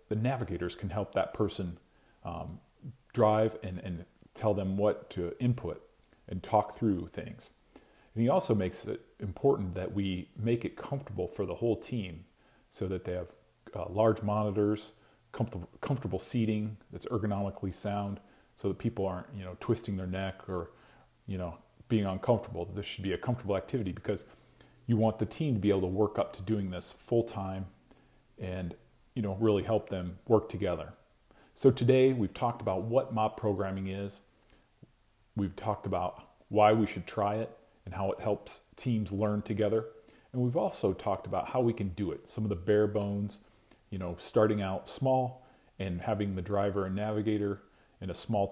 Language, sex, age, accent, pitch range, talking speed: English, male, 40-59, American, 95-110 Hz, 175 wpm